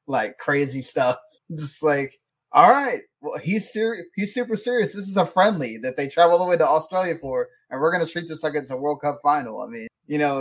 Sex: male